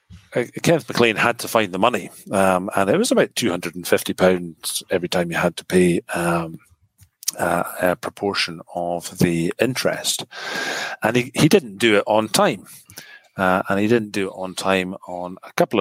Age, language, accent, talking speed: 40-59, English, British, 175 wpm